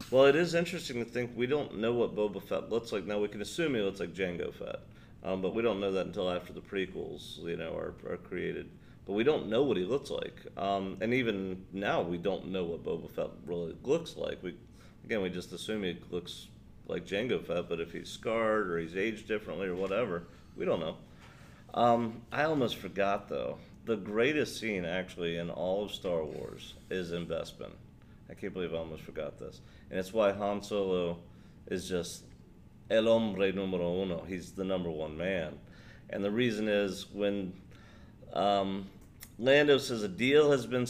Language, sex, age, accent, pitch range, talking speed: English, male, 40-59, American, 95-120 Hz, 195 wpm